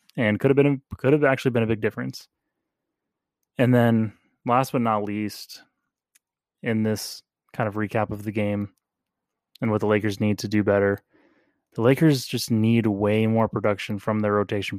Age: 20-39